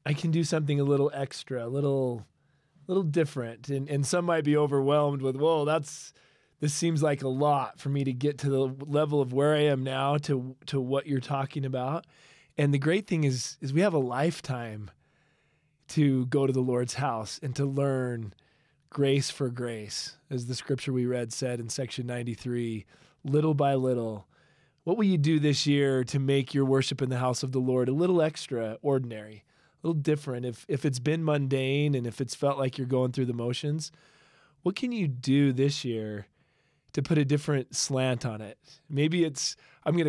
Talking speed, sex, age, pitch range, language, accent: 200 wpm, male, 20-39, 125-150 Hz, English, American